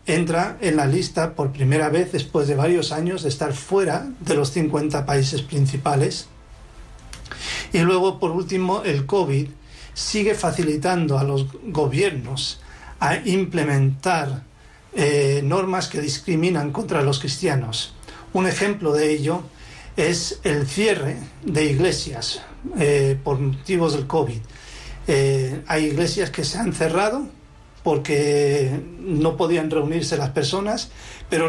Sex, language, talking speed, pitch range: male, Spanish, 130 wpm, 140-170 Hz